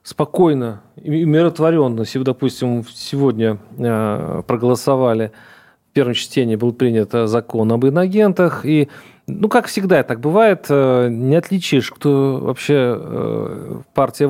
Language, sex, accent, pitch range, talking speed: Russian, male, native, 120-165 Hz, 115 wpm